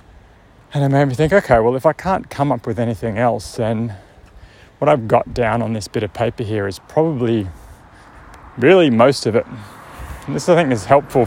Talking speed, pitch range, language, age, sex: 200 wpm, 100-125 Hz, English, 30-49, male